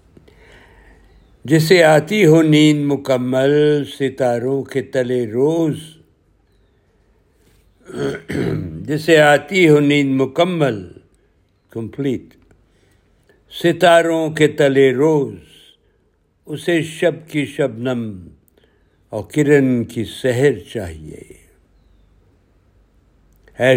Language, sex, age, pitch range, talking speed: Urdu, male, 60-79, 100-145 Hz, 75 wpm